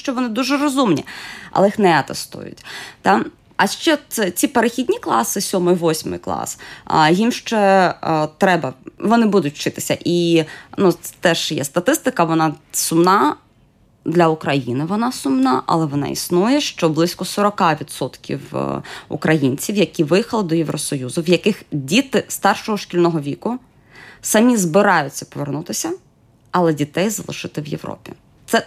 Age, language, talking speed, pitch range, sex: 20-39, Ukrainian, 125 wpm, 160-215 Hz, female